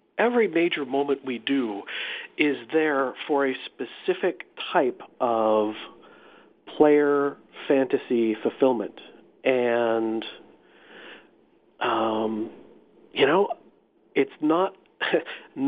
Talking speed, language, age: 80 wpm, English, 40-59